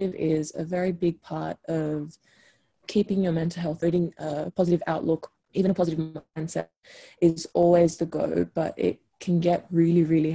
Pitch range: 160-180 Hz